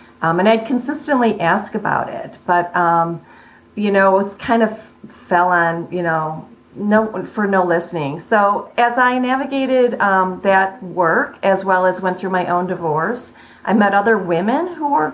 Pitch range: 185-230 Hz